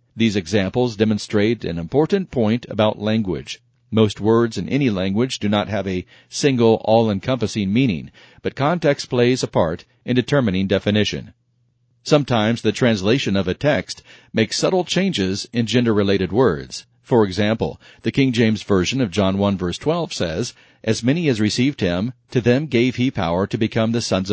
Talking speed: 165 wpm